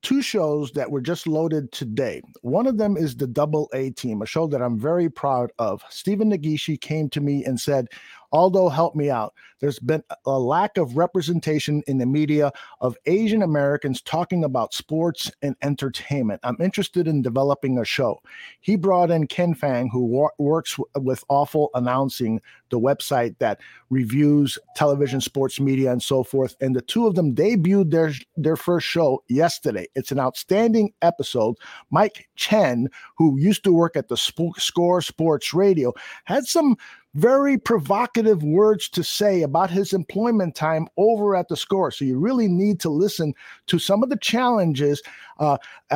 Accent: American